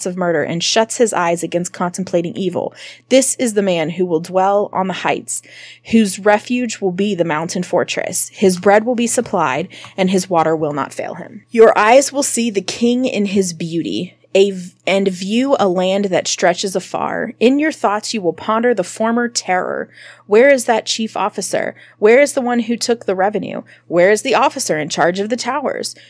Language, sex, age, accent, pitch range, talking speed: English, female, 20-39, American, 185-230 Hz, 195 wpm